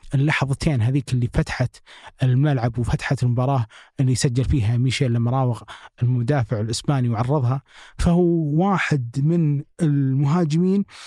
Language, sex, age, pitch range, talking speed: Arabic, male, 20-39, 120-150 Hz, 105 wpm